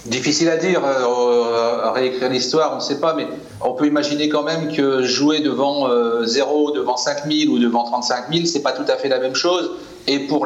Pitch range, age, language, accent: 120-150 Hz, 40-59, French, French